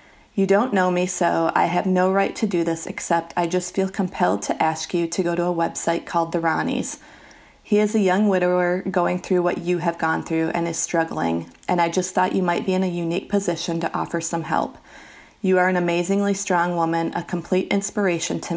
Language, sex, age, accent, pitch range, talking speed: English, female, 30-49, American, 165-185 Hz, 220 wpm